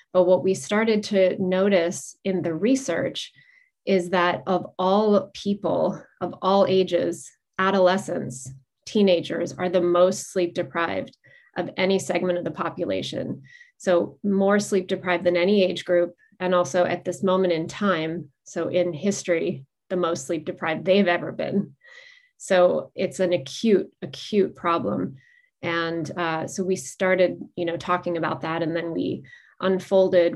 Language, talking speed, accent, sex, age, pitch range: English, 150 wpm, American, female, 30-49, 170-195 Hz